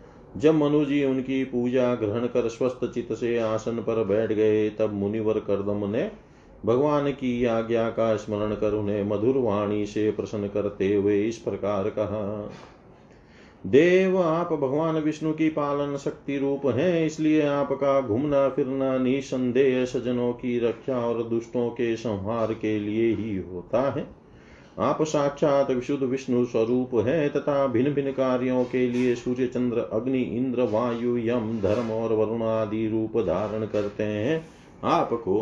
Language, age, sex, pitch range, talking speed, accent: Hindi, 40-59, male, 110-135 Hz, 145 wpm, native